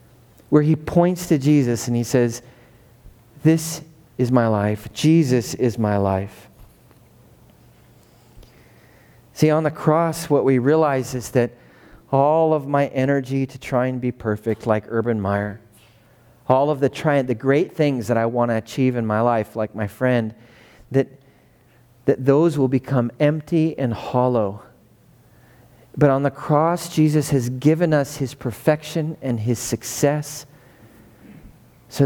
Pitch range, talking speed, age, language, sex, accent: 120-155 Hz, 140 wpm, 40-59, English, male, American